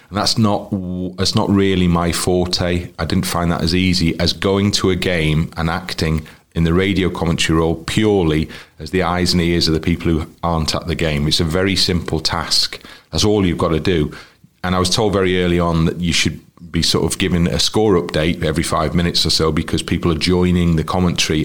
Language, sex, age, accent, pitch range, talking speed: English, male, 40-59, British, 80-95 Hz, 220 wpm